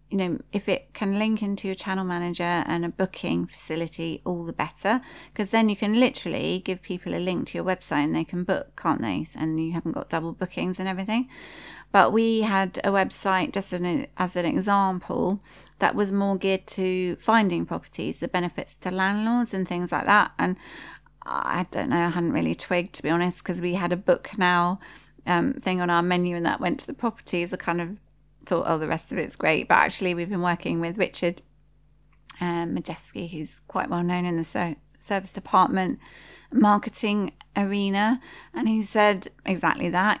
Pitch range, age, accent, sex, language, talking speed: 170-200 Hz, 30-49, British, female, English, 195 wpm